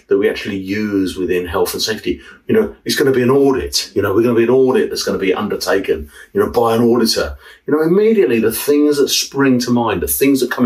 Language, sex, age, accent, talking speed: English, male, 50-69, British, 265 wpm